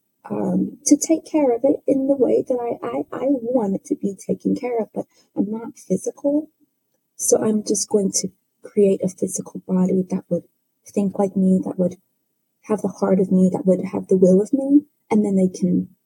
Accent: American